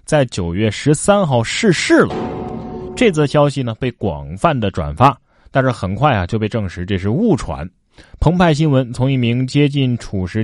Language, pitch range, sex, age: Chinese, 100-145 Hz, male, 20-39